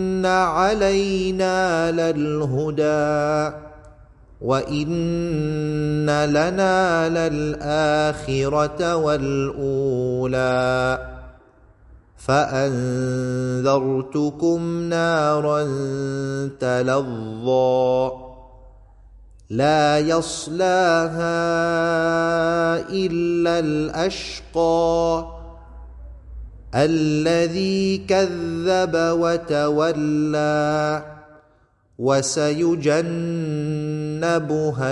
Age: 30-49